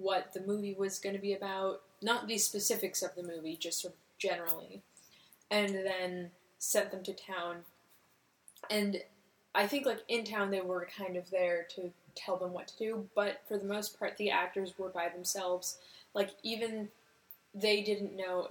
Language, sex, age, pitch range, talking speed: English, female, 10-29, 180-205 Hz, 180 wpm